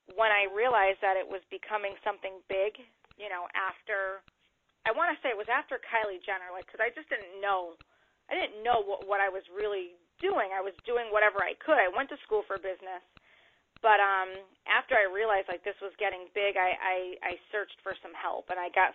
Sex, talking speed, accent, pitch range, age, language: female, 210 wpm, American, 190-225 Hz, 30-49, English